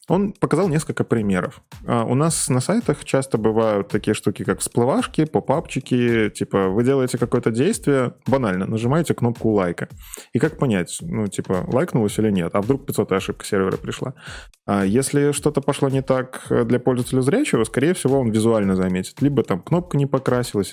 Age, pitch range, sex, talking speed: 20-39, 100-135 Hz, male, 160 wpm